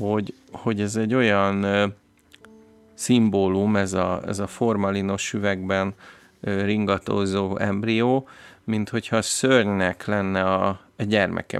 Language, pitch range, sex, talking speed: Hungarian, 100-120 Hz, male, 120 wpm